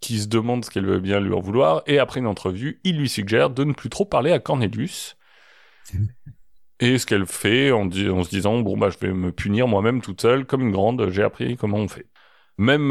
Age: 30-49